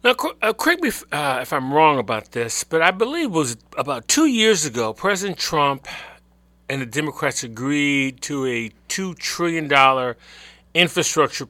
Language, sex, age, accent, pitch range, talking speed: English, male, 40-59, American, 125-175 Hz, 160 wpm